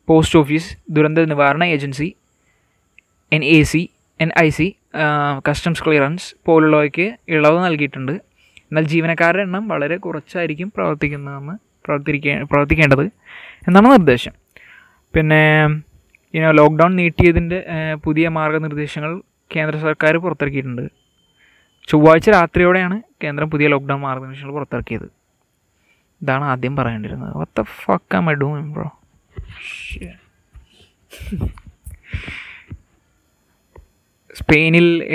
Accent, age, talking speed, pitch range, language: native, 20-39, 75 wpm, 140-160 Hz, Malayalam